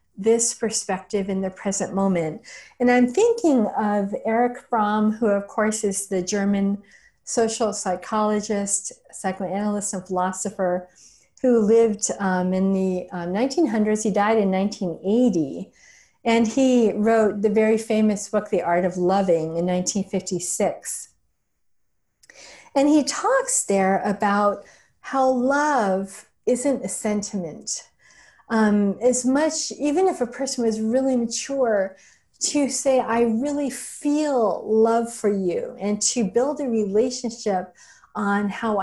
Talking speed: 125 wpm